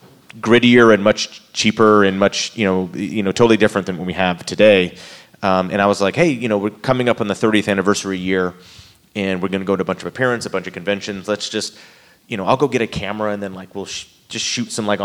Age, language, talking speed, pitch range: 30-49, English, 260 wpm, 95-105 Hz